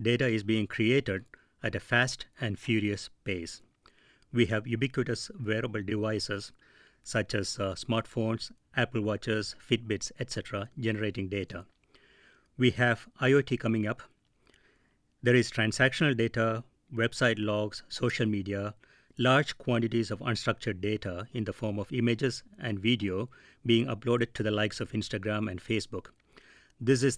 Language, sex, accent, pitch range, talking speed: English, male, Indian, 105-125 Hz, 135 wpm